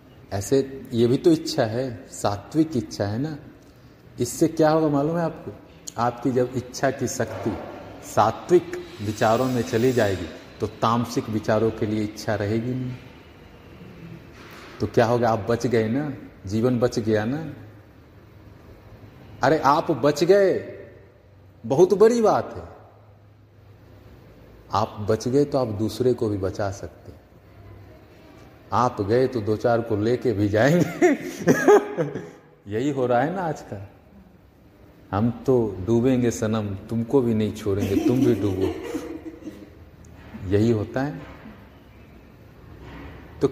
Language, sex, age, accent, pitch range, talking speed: Hindi, male, 40-59, native, 105-135 Hz, 130 wpm